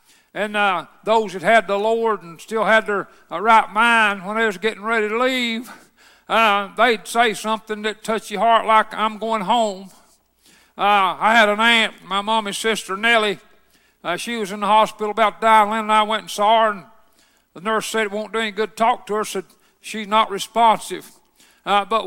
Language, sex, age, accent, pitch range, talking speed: English, male, 60-79, American, 215-235 Hz, 205 wpm